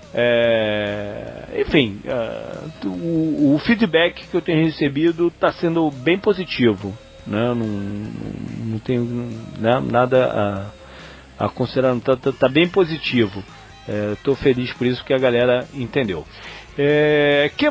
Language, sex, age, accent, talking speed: Portuguese, male, 40-59, Brazilian, 140 wpm